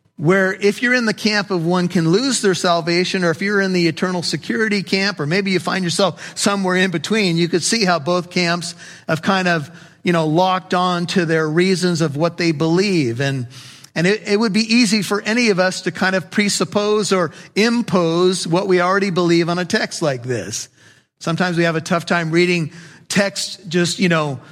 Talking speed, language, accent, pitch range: 210 wpm, English, American, 165-200 Hz